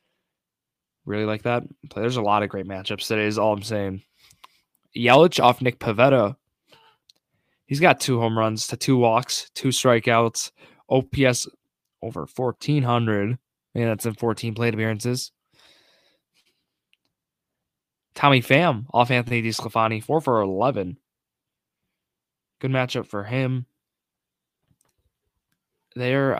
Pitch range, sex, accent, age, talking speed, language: 110-130 Hz, male, American, 20-39, 115 wpm, English